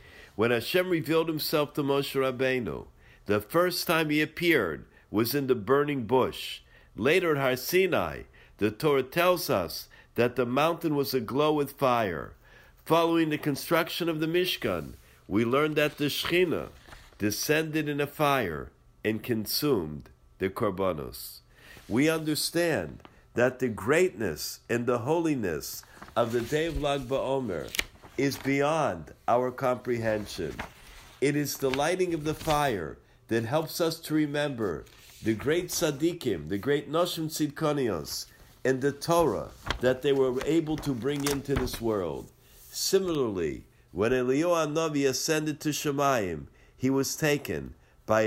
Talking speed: 135 wpm